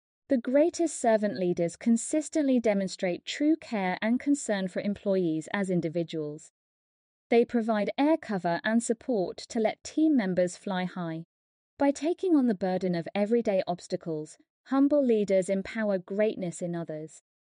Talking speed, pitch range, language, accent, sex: 135 wpm, 190-280 Hz, English, British, female